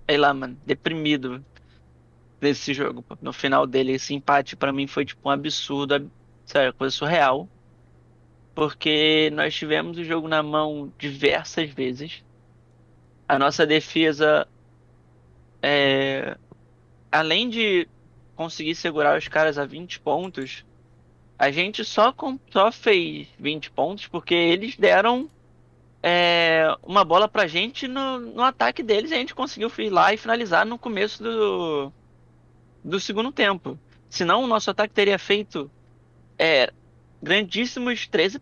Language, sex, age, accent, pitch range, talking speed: Portuguese, male, 20-39, Brazilian, 140-210 Hz, 135 wpm